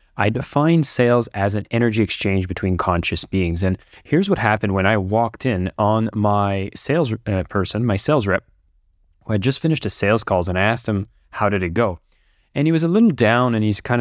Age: 20-39